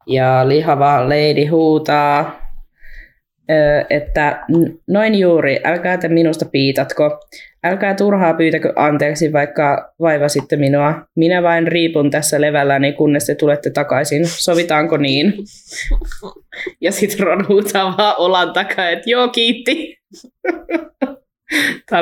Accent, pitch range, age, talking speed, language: native, 140-175 Hz, 20-39, 110 wpm, Finnish